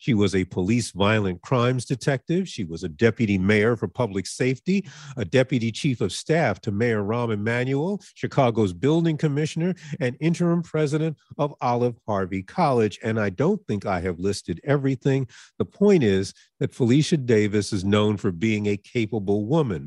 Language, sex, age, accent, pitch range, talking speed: English, male, 50-69, American, 105-150 Hz, 165 wpm